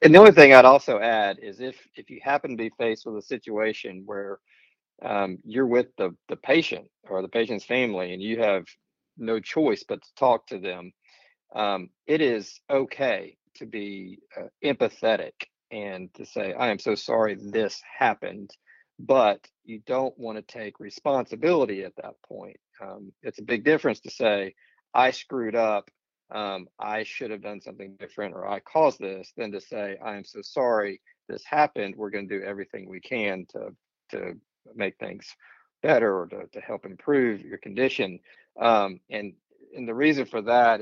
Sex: male